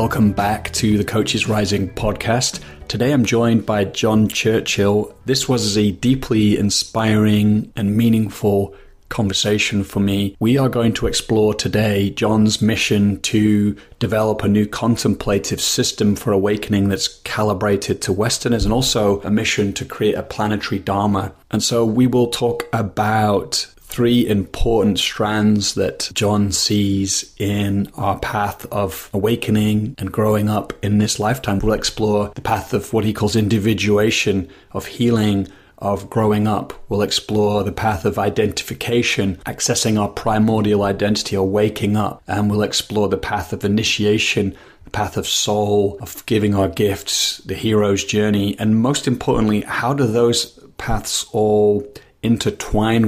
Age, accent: 30-49, British